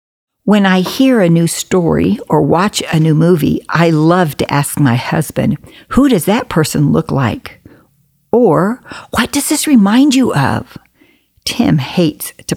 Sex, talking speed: female, 160 wpm